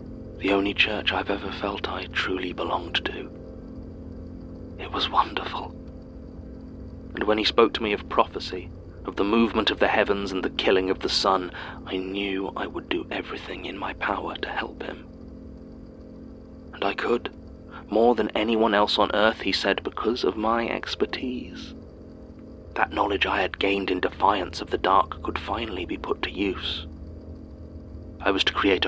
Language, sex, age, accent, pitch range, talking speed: English, male, 30-49, British, 80-100 Hz, 165 wpm